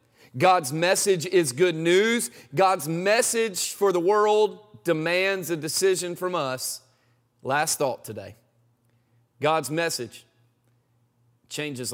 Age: 40-59